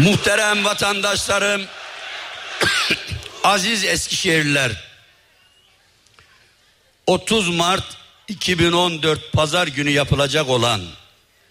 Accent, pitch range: native, 120-160 Hz